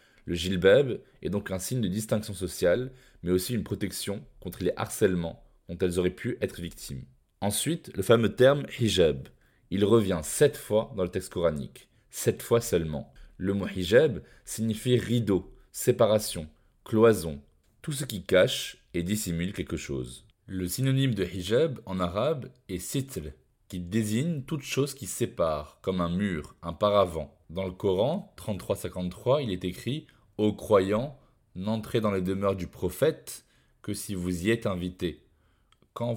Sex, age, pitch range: male, 20-39, 90-115 Hz